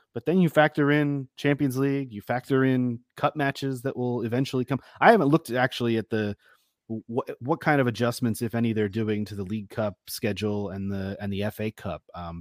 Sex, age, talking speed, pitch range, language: male, 30-49, 205 wpm, 105-130 Hz, English